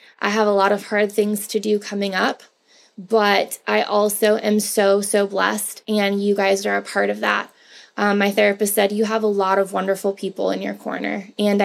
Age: 20-39